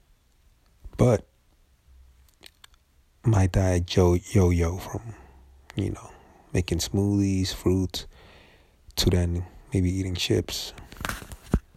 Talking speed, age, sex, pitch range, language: 75 wpm, 30-49, male, 85-100 Hz, English